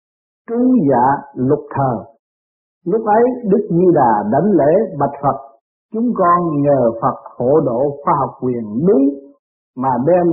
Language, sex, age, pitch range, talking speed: Vietnamese, male, 50-69, 145-195 Hz, 140 wpm